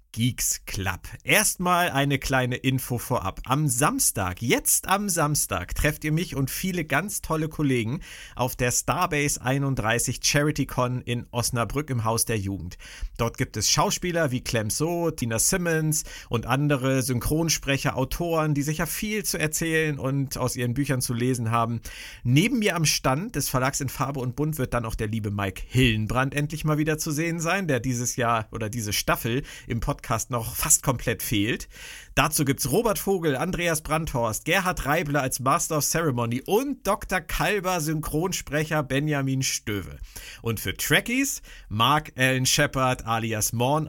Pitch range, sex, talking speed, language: 120-155 Hz, male, 160 wpm, German